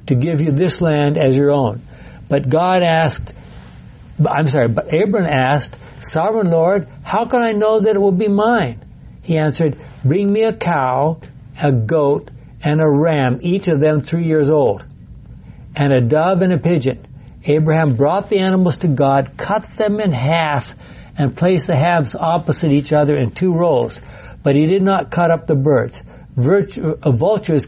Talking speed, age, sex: 170 wpm, 60-79, male